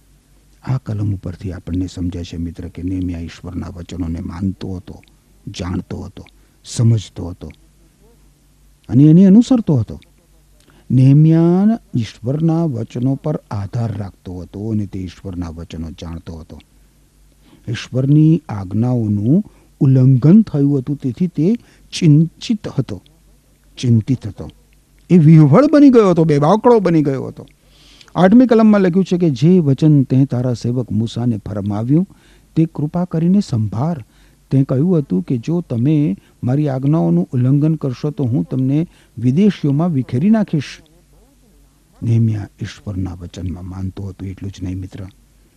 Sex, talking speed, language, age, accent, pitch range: male, 50 wpm, Gujarati, 50-69, native, 105-170 Hz